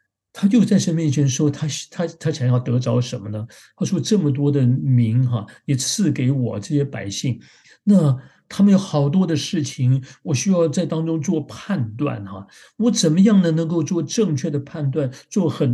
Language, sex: Chinese, male